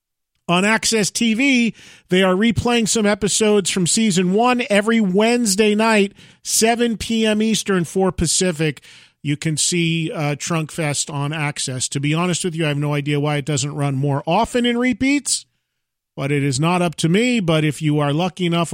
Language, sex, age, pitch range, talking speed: English, male, 40-59, 150-205 Hz, 185 wpm